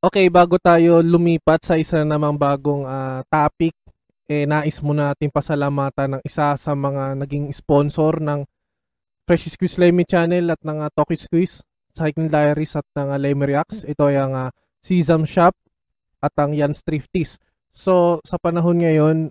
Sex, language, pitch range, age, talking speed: male, Filipino, 140-170 Hz, 20-39, 160 wpm